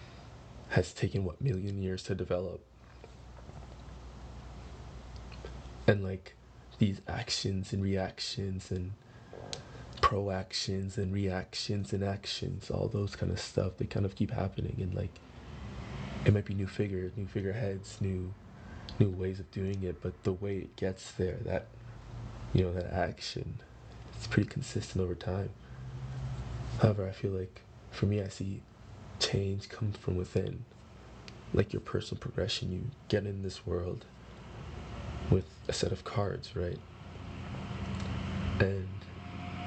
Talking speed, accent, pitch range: 135 wpm, American, 90-105 Hz